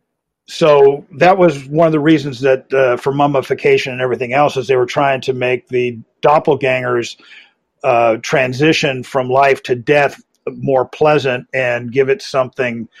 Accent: American